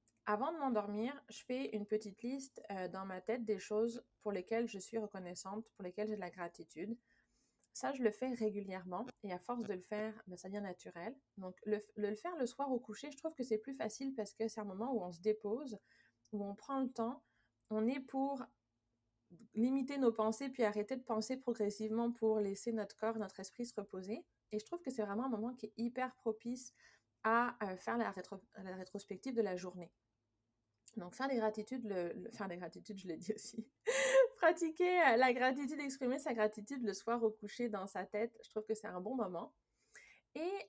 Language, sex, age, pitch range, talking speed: French, female, 30-49, 200-250 Hz, 205 wpm